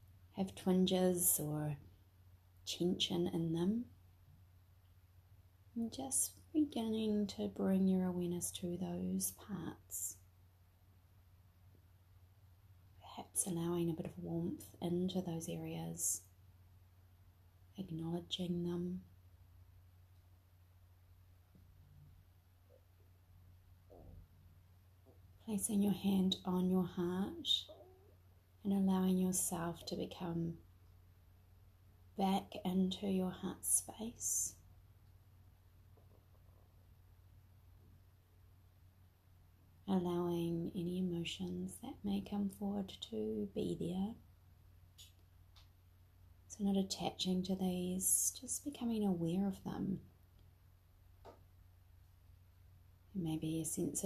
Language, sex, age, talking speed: English, female, 30-49, 75 wpm